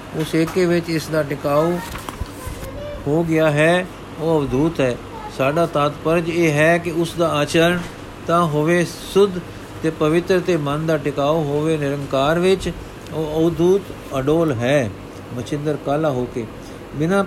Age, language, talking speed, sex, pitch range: 60-79, Punjabi, 145 wpm, male, 135-170 Hz